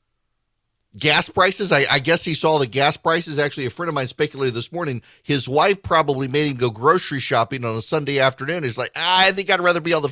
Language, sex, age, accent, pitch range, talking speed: English, male, 50-69, American, 130-175 Hz, 230 wpm